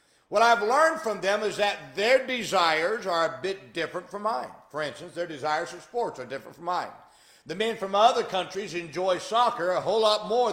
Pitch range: 180-240 Hz